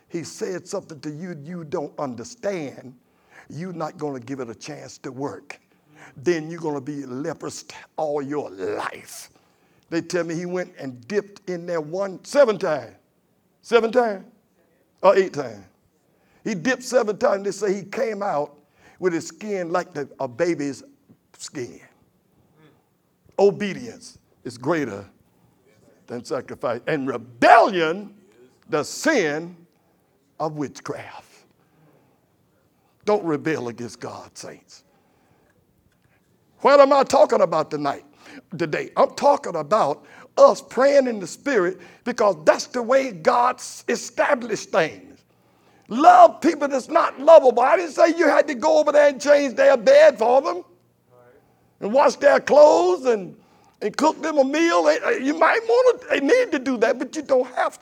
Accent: American